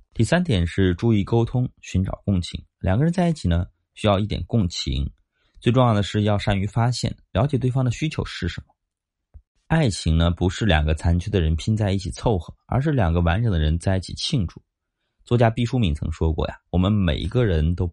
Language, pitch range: Chinese, 85-115 Hz